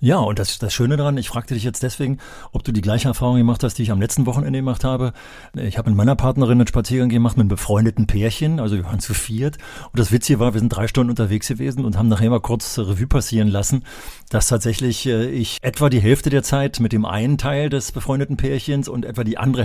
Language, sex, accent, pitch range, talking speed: German, male, German, 110-135 Hz, 245 wpm